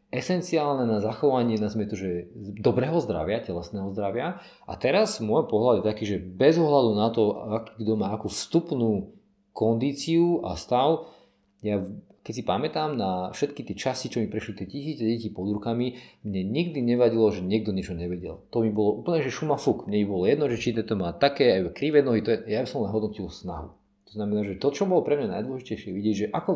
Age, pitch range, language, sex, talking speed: 40-59, 105-140 Hz, Slovak, male, 200 wpm